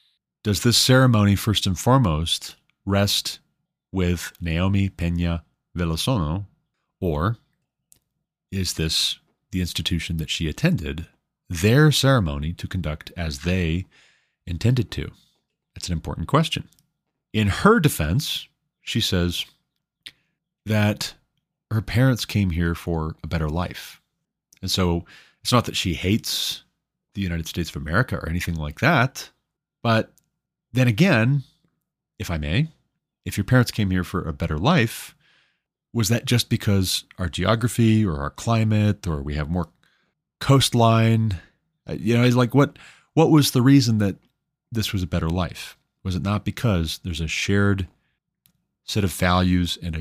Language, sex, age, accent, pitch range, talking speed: English, male, 30-49, American, 85-125 Hz, 140 wpm